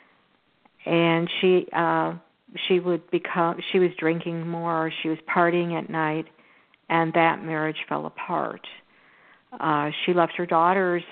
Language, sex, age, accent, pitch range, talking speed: English, female, 50-69, American, 160-175 Hz, 135 wpm